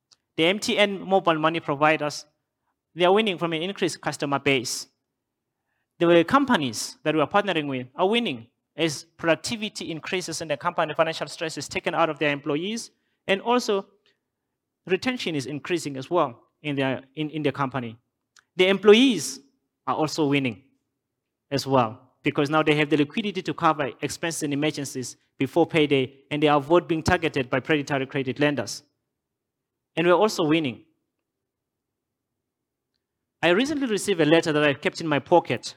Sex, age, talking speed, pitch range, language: male, 30-49, 155 wpm, 135-175 Hz, English